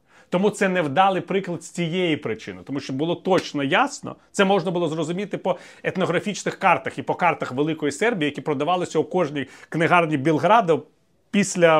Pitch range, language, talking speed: 140-180 Hz, Ukrainian, 160 wpm